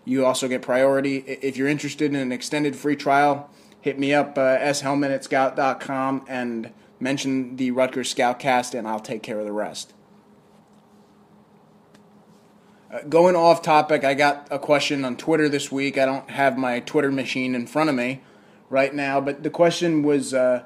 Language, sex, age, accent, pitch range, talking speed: English, male, 20-39, American, 130-150 Hz, 175 wpm